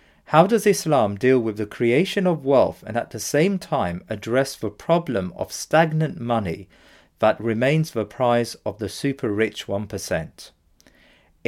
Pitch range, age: 110-145 Hz, 40-59